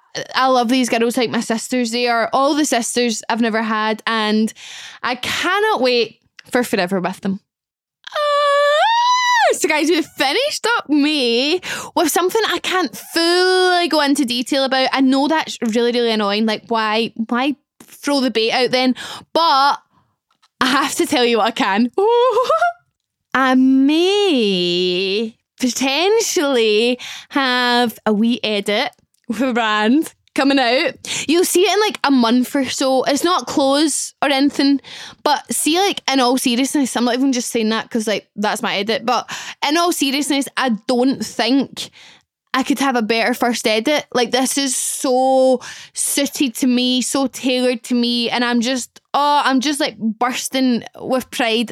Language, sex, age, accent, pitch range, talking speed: English, female, 10-29, British, 235-290 Hz, 160 wpm